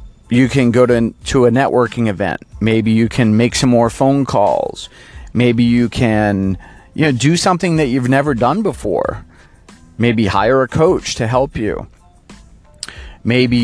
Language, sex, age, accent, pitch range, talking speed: English, male, 40-59, American, 105-130 Hz, 150 wpm